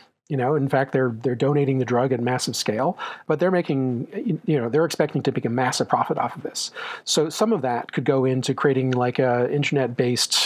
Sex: male